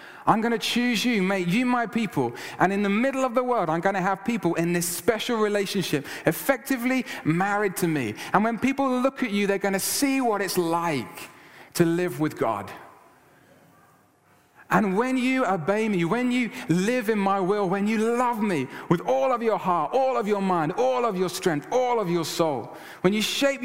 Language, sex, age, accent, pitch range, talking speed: English, male, 30-49, British, 175-235 Hz, 205 wpm